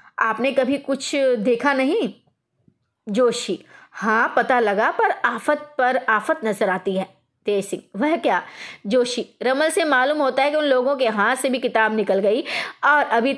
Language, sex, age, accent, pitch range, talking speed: Hindi, female, 20-39, native, 220-280 Hz, 170 wpm